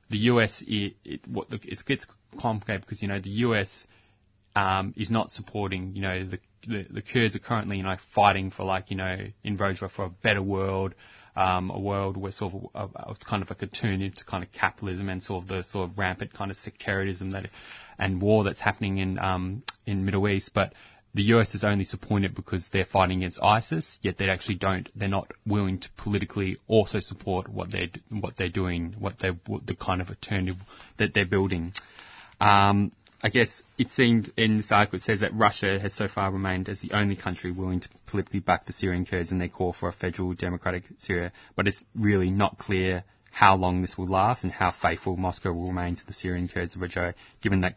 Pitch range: 95-105 Hz